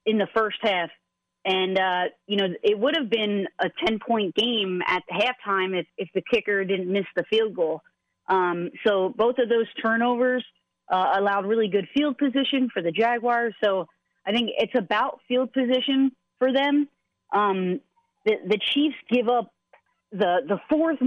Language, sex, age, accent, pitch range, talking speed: English, female, 30-49, American, 205-255 Hz, 170 wpm